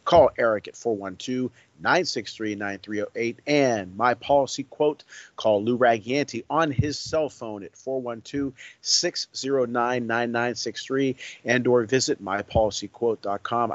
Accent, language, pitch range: American, English, 110-130 Hz